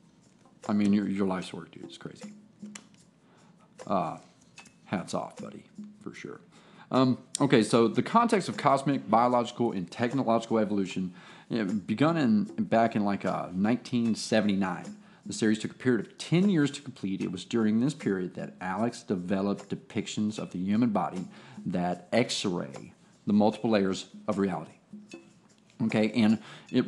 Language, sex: English, male